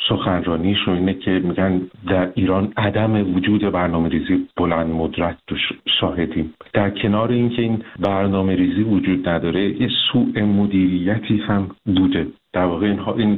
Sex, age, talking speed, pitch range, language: male, 50-69, 125 wpm, 90-105 Hz, Persian